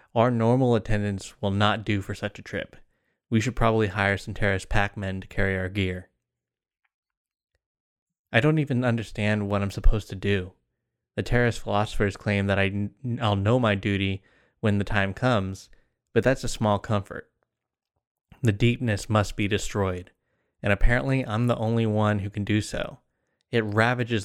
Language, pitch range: English, 100-120 Hz